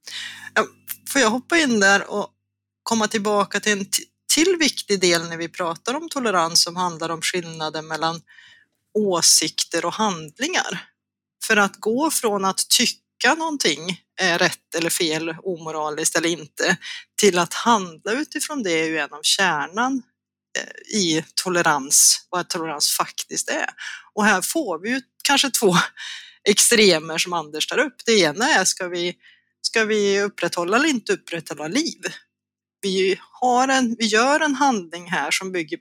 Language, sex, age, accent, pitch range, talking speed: Swedish, female, 30-49, native, 165-230 Hz, 150 wpm